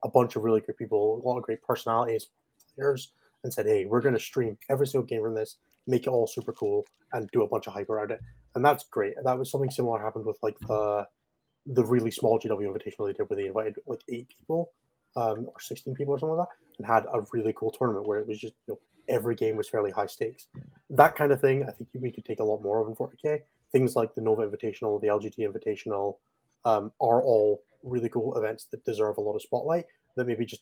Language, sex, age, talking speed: English, male, 20-39, 245 wpm